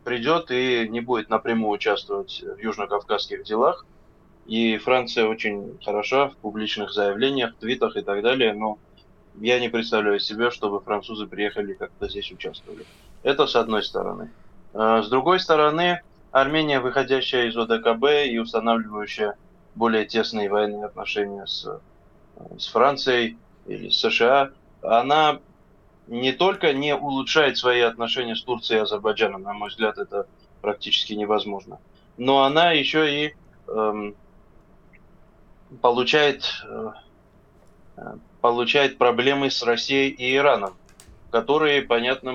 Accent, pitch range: native, 105-135 Hz